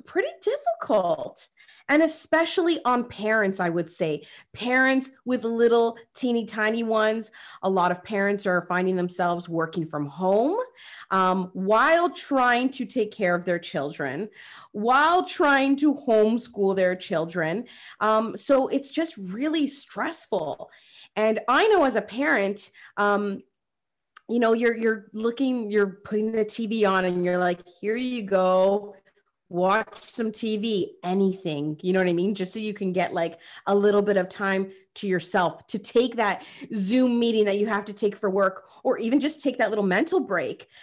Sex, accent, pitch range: female, American, 190-250 Hz